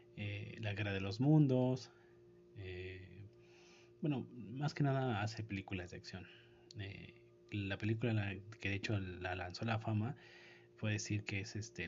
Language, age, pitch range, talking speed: Spanish, 30-49, 100-120 Hz, 150 wpm